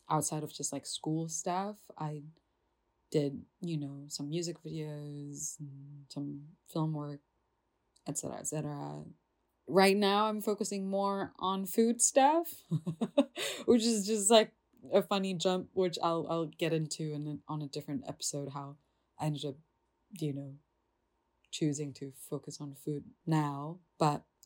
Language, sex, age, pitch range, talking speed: English, female, 20-39, 150-195 Hz, 145 wpm